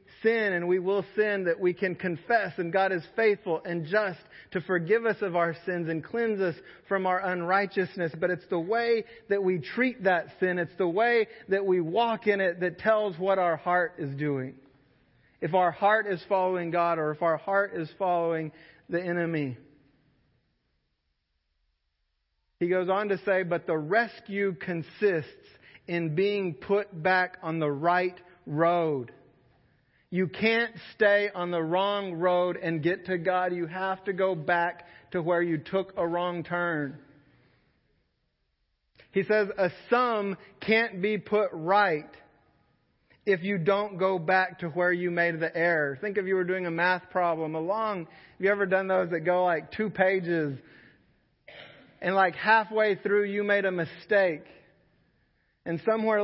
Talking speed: 160 wpm